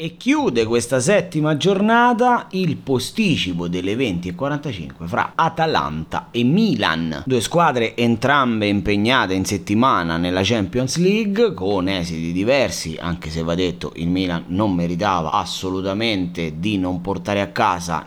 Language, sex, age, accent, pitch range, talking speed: Italian, male, 30-49, native, 90-135 Hz, 130 wpm